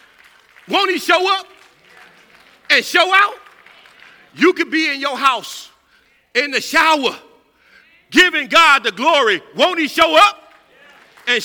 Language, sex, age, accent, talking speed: English, male, 50-69, American, 130 wpm